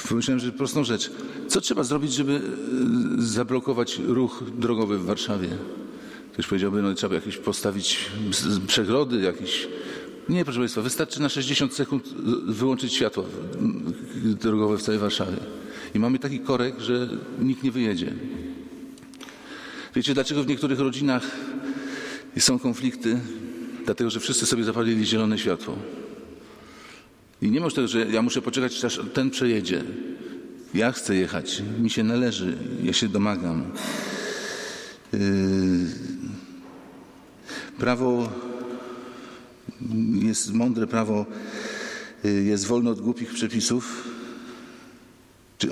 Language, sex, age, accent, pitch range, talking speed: English, male, 50-69, Polish, 110-135 Hz, 115 wpm